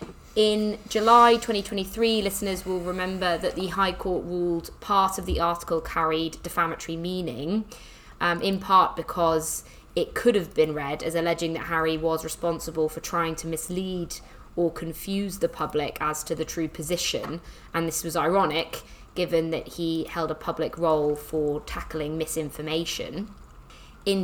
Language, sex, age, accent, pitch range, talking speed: English, female, 20-39, British, 155-180 Hz, 150 wpm